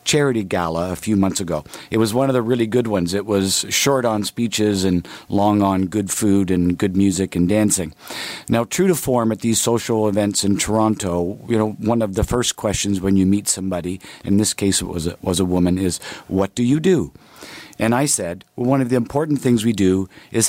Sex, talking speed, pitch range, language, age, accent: male, 215 wpm, 95-115 Hz, English, 50-69, American